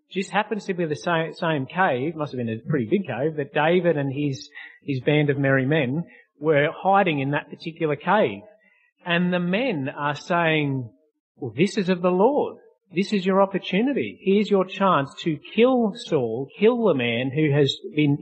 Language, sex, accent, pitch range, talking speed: English, male, Australian, 140-190 Hz, 185 wpm